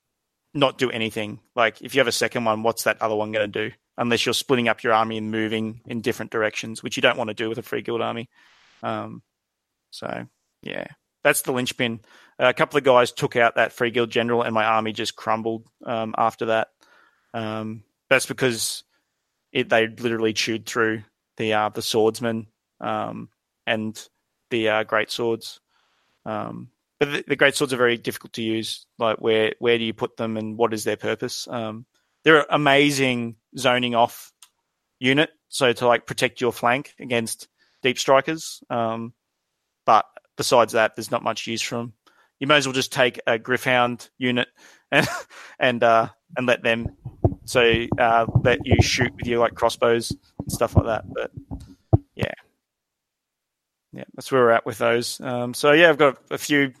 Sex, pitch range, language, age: male, 110-125 Hz, English, 30-49